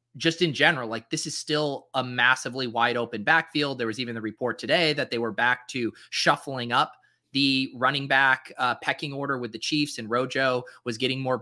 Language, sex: English, male